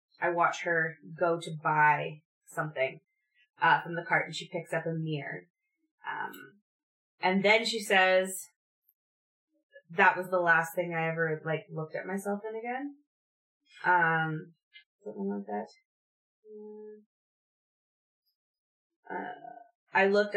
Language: English